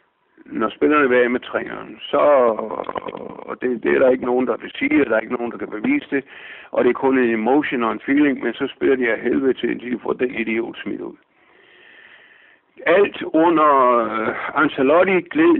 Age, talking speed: 60-79, 205 wpm